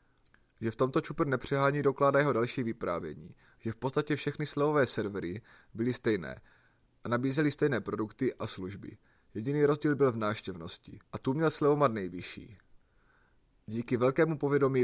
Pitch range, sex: 110-140 Hz, male